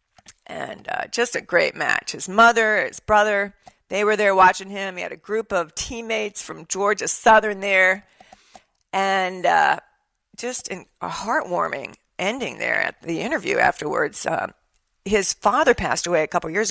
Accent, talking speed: American, 160 wpm